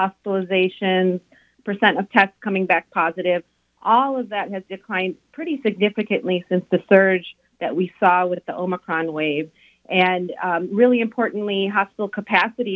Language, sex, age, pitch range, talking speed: Arabic, female, 30-49, 185-215 Hz, 140 wpm